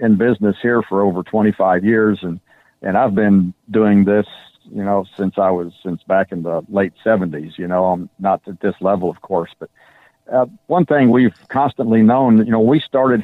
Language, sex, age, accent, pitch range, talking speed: English, male, 50-69, American, 95-115 Hz, 205 wpm